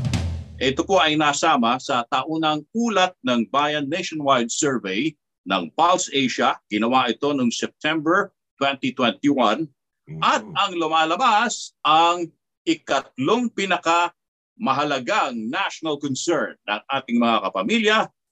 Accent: native